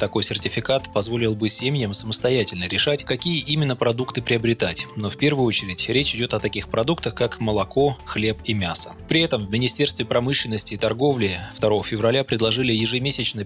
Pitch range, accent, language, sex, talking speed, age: 105-130 Hz, native, Russian, male, 160 wpm, 20-39